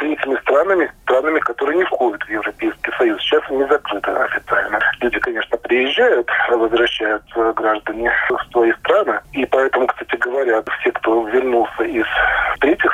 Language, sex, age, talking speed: Russian, male, 40-59, 140 wpm